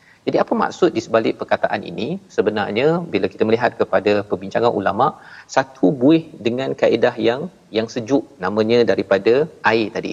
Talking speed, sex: 150 wpm, male